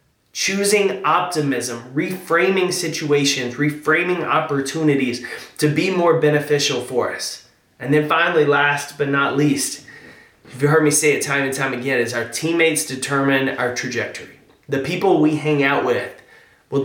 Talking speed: 150 wpm